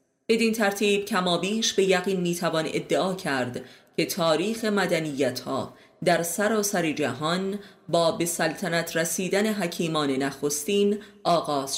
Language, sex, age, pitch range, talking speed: Persian, female, 30-49, 145-195 Hz, 125 wpm